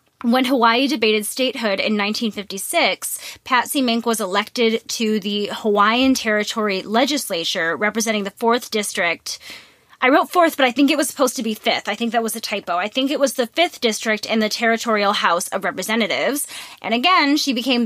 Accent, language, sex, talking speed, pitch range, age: American, English, female, 180 wpm, 200-250 Hz, 20-39